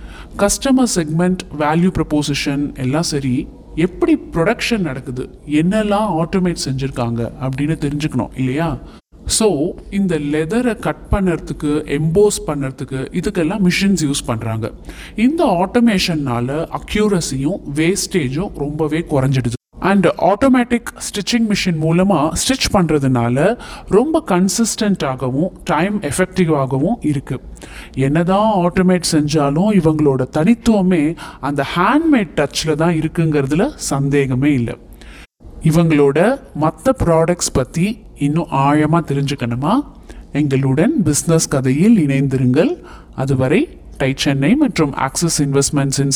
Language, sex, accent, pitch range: Tamil, male, native, 140-190 Hz